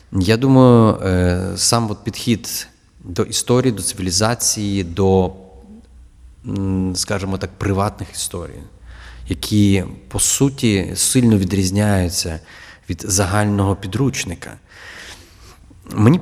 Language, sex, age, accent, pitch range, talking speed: Ukrainian, male, 30-49, native, 90-115 Hz, 85 wpm